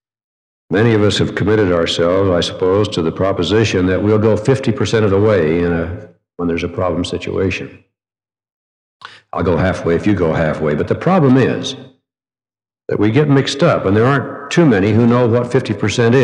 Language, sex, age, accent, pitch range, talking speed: English, male, 60-79, American, 90-115 Hz, 175 wpm